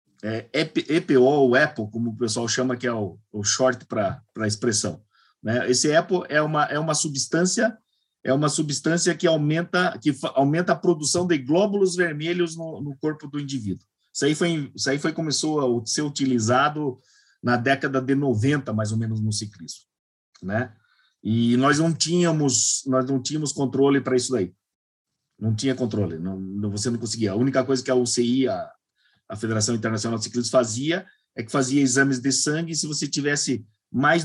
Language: Portuguese